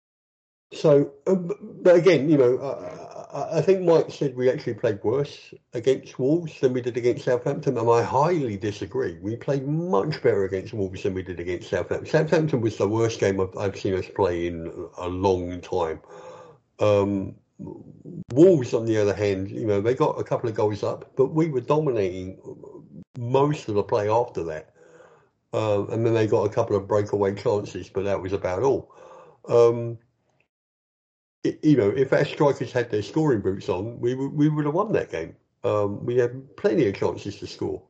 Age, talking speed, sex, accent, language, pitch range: 50-69, 185 wpm, male, British, English, 105-145 Hz